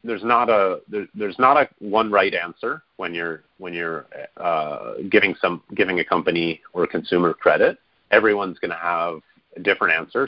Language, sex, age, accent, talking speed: English, male, 30-49, American, 170 wpm